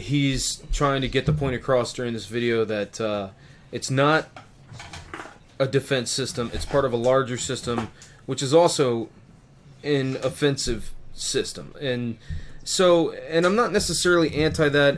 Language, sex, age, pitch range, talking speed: English, male, 20-39, 120-145 Hz, 150 wpm